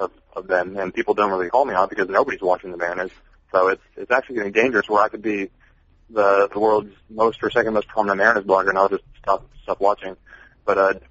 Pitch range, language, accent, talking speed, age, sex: 85-110 Hz, English, American, 230 wpm, 30-49, male